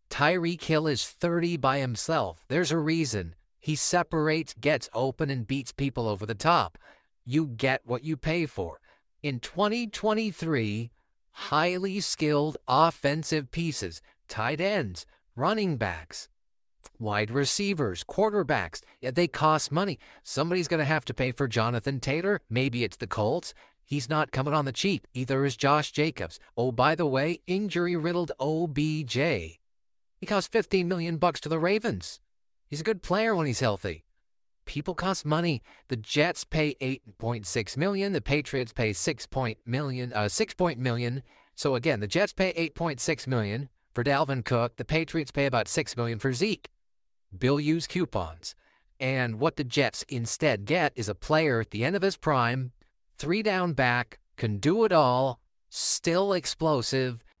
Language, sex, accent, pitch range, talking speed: English, male, American, 120-165 Hz, 155 wpm